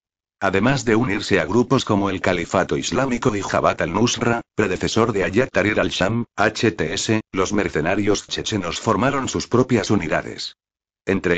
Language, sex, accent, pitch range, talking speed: Spanish, male, Spanish, 95-120 Hz, 135 wpm